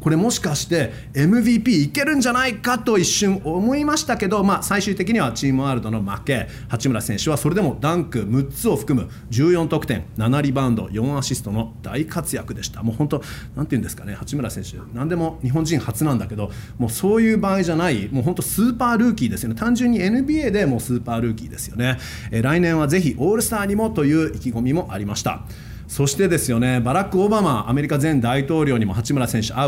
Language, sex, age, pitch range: Japanese, male, 30-49, 115-185 Hz